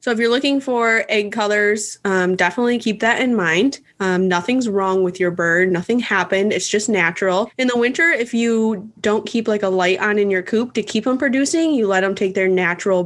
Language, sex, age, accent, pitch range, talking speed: English, female, 20-39, American, 185-235 Hz, 220 wpm